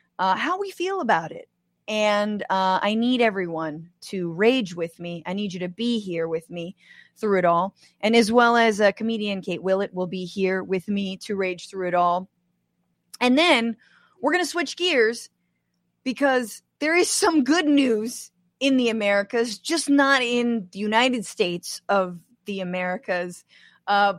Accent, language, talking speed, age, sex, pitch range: American, English, 175 wpm, 30-49, female, 185-235 Hz